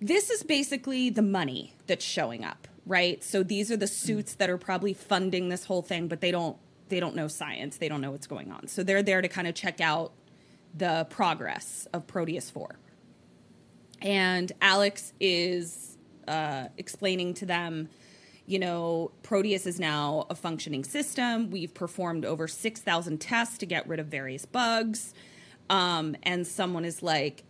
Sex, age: female, 20-39